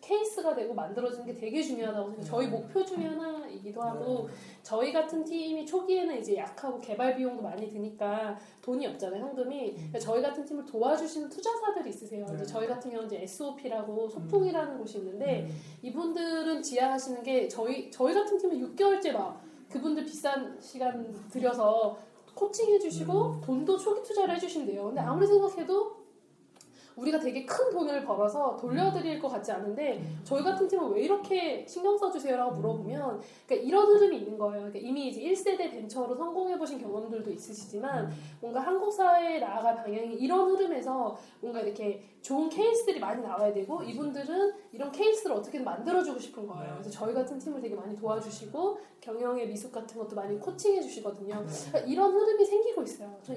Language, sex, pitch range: Korean, female, 220-360 Hz